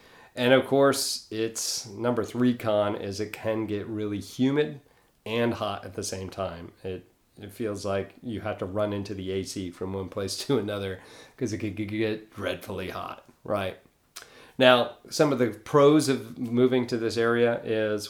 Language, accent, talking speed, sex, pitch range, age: English, American, 175 wpm, male, 95-115 Hz, 40-59